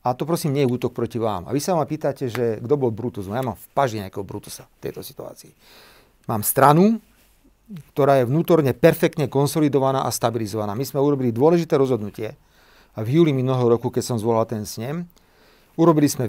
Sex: male